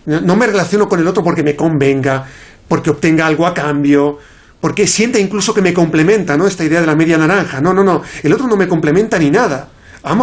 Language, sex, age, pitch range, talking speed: Spanish, male, 40-59, 150-220 Hz, 225 wpm